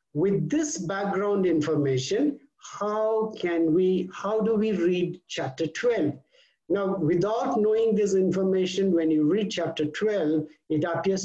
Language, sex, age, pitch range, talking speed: English, male, 60-79, 155-205 Hz, 135 wpm